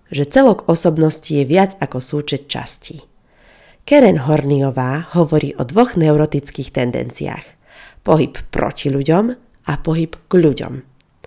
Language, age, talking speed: Slovak, 30-49, 115 wpm